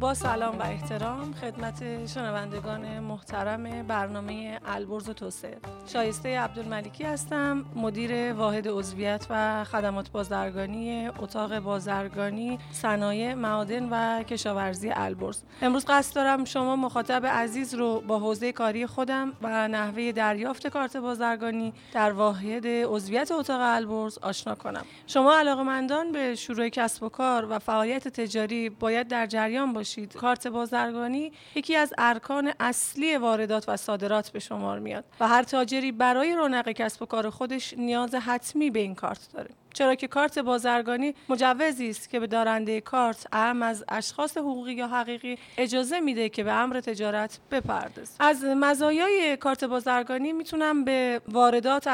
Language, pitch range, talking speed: Persian, 220-255 Hz, 140 wpm